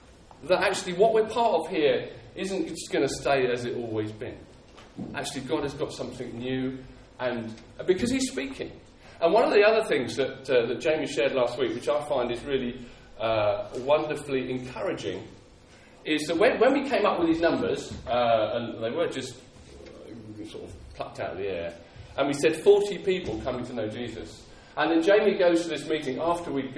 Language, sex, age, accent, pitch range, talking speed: English, male, 40-59, British, 120-170 Hz, 195 wpm